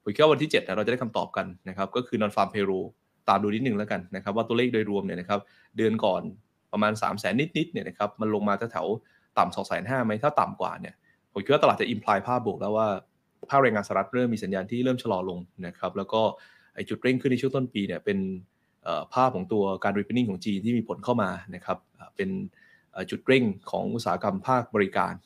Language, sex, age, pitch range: Thai, male, 20-39, 100-130 Hz